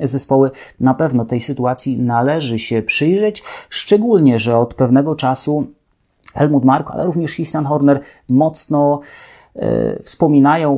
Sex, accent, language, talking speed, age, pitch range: male, Polish, English, 120 wpm, 30-49, 130-150 Hz